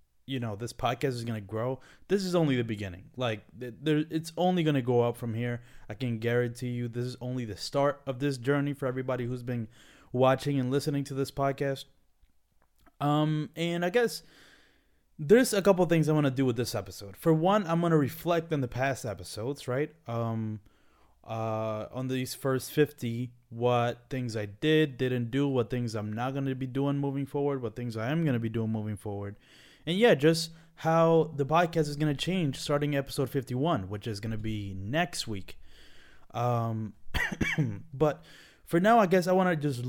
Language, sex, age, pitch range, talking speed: English, male, 20-39, 115-155 Hz, 200 wpm